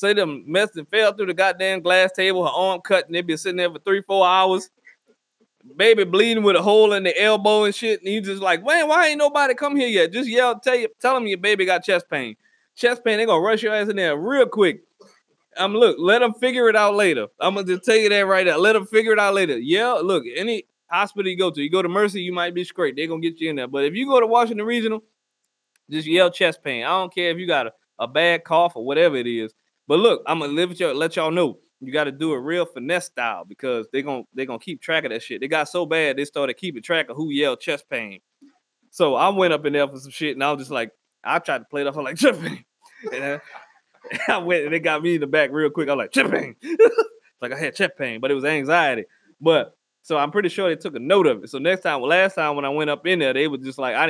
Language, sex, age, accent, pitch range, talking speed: English, male, 20-39, American, 160-215 Hz, 275 wpm